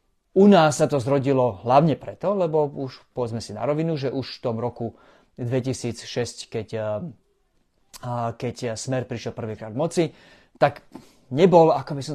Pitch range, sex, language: 115-145 Hz, male, Slovak